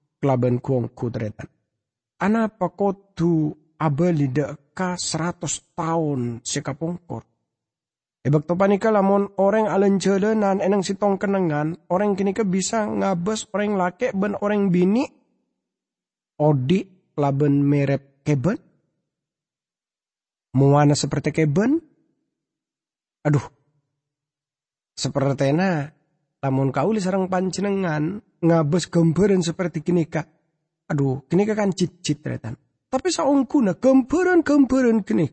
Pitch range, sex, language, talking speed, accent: 145-200 Hz, male, English, 100 wpm, Indonesian